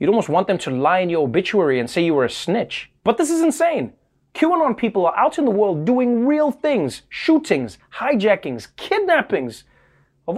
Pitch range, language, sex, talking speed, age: 150-225 Hz, English, male, 190 wpm, 30-49